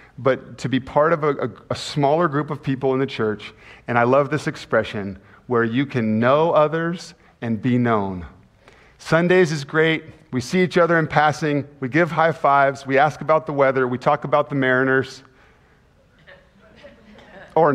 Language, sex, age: English, male, 40-59